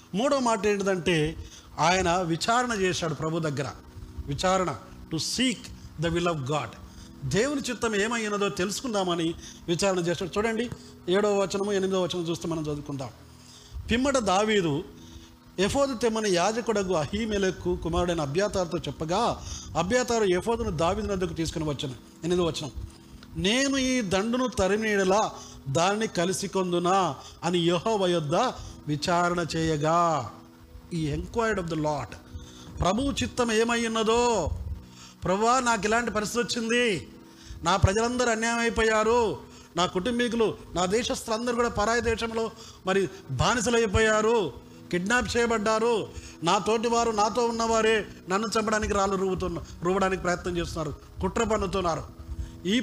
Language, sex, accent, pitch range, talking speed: Telugu, male, native, 165-225 Hz, 110 wpm